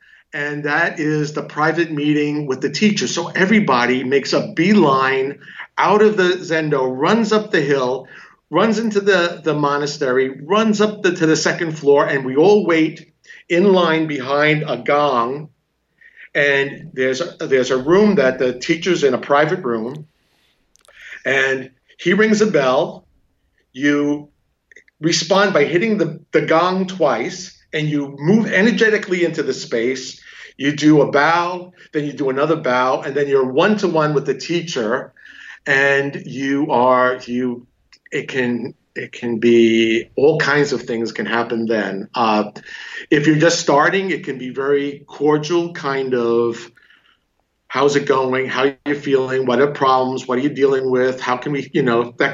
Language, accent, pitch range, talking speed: English, American, 130-170 Hz, 160 wpm